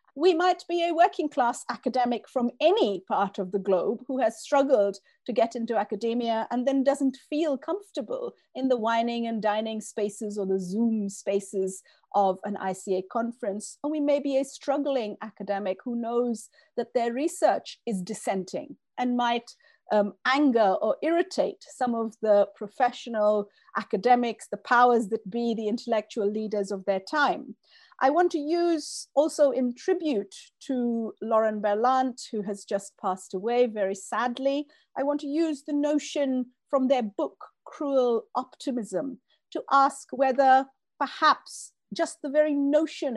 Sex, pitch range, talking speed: female, 210-280 Hz, 155 wpm